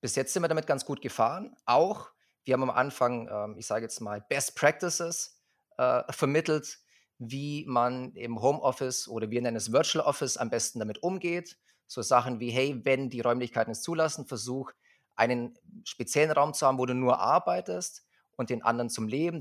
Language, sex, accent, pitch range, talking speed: German, male, German, 115-145 Hz, 185 wpm